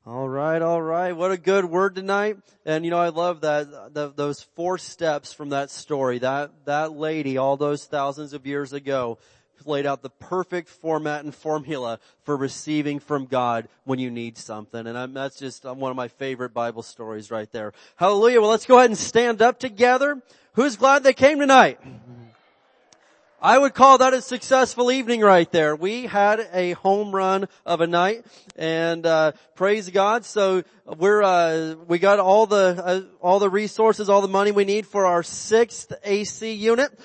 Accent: American